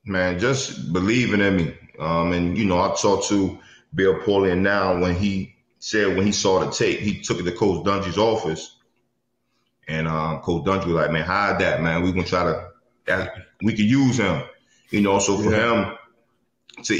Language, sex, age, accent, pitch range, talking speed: English, male, 20-39, American, 90-110 Hz, 190 wpm